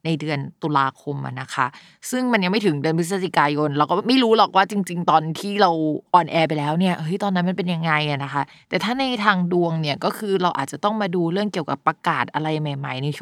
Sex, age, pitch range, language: female, 20-39, 160-205 Hz, Thai